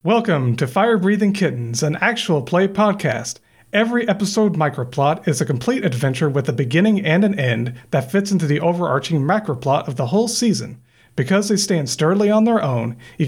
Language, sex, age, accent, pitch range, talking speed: English, male, 40-59, American, 125-185 Hz, 180 wpm